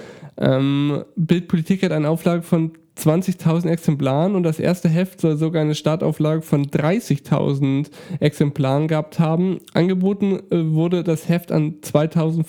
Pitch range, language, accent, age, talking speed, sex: 155-175 Hz, German, German, 10-29, 130 wpm, male